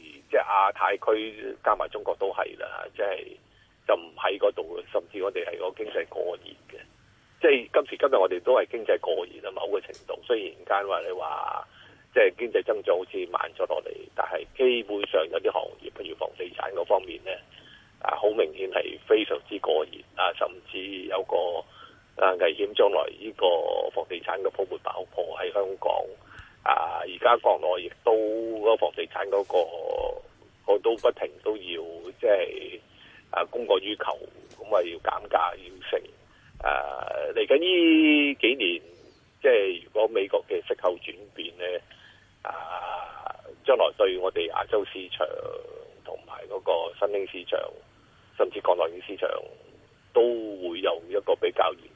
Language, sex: Chinese, male